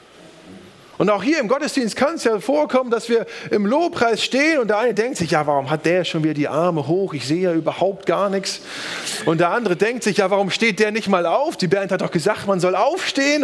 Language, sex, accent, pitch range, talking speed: German, male, German, 165-235 Hz, 240 wpm